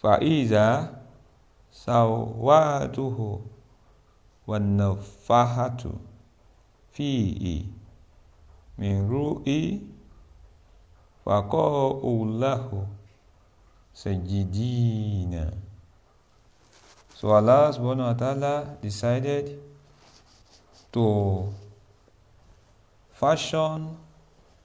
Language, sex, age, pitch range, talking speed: English, male, 50-69, 90-120 Hz, 40 wpm